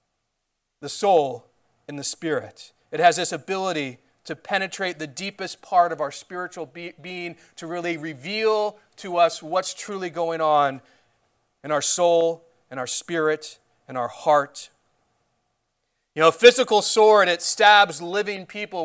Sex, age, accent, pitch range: male, 30-49, American, 165-215 Hz